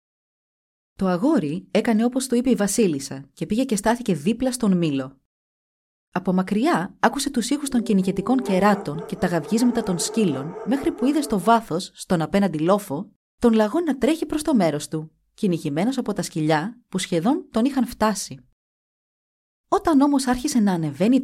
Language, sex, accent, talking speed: Greek, female, native, 165 wpm